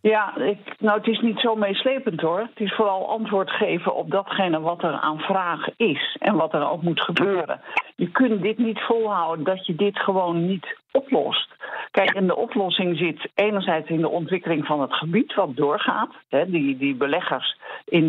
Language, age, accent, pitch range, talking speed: Dutch, 50-69, Dutch, 155-210 Hz, 180 wpm